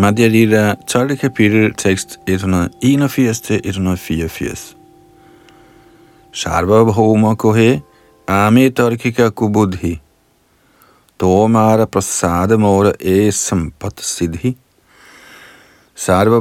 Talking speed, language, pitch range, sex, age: 75 wpm, Danish, 90-115 Hz, male, 50-69